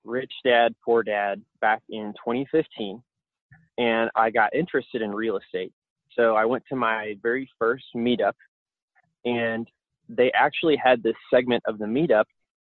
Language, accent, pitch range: English, American, 105-120 Hz